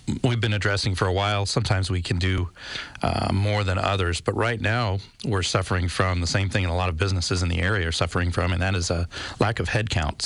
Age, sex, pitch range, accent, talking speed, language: 40-59, male, 90-110 Hz, American, 235 wpm, English